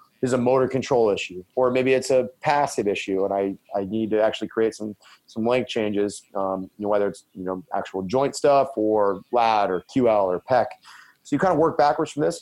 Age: 30-49